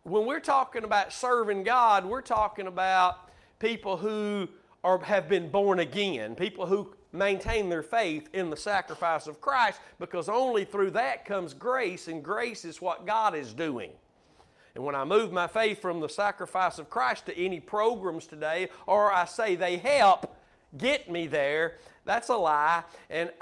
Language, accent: English, American